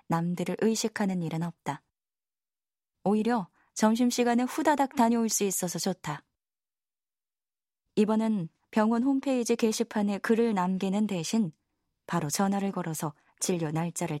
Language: Korean